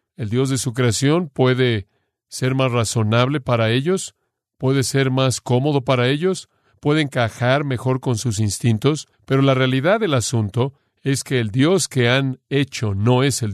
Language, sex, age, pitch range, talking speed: Spanish, male, 40-59, 115-135 Hz, 170 wpm